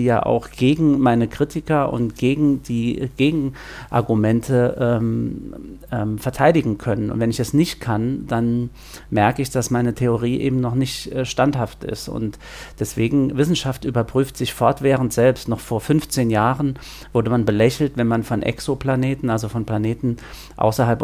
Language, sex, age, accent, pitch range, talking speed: German, male, 50-69, German, 115-130 Hz, 150 wpm